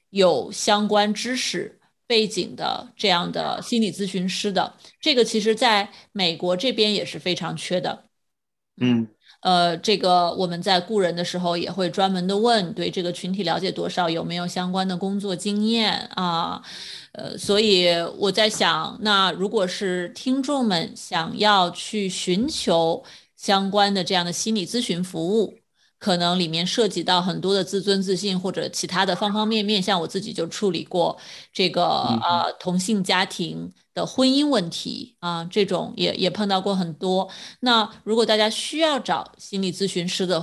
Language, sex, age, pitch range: Chinese, female, 30-49, 180-215 Hz